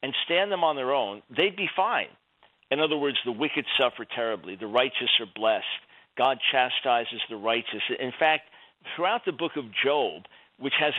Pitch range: 120-150 Hz